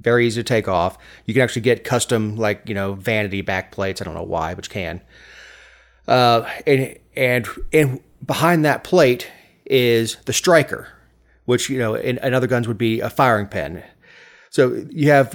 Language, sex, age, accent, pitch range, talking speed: English, male, 30-49, American, 100-130 Hz, 190 wpm